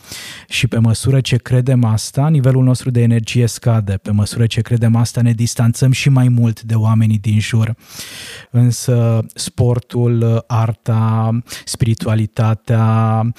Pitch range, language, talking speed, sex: 115-125 Hz, Romanian, 130 wpm, male